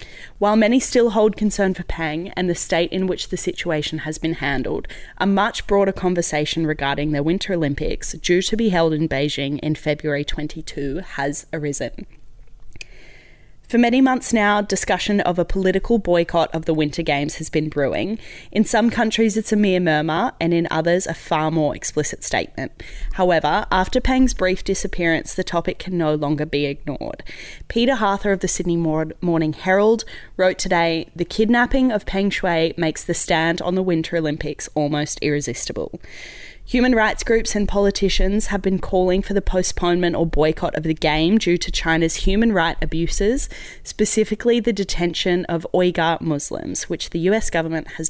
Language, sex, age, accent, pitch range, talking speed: English, female, 20-39, Australian, 160-200 Hz, 170 wpm